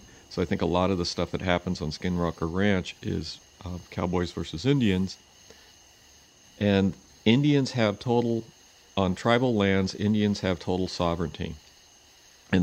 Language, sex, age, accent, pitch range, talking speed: English, male, 50-69, American, 85-100 Hz, 145 wpm